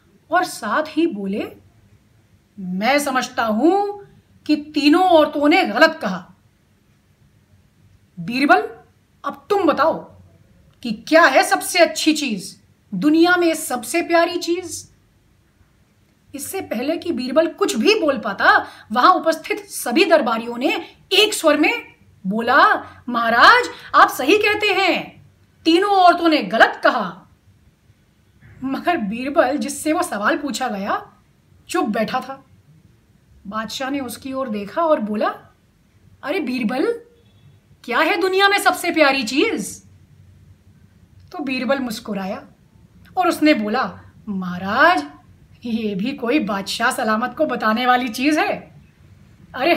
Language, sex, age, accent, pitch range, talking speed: Hindi, female, 30-49, native, 230-340 Hz, 120 wpm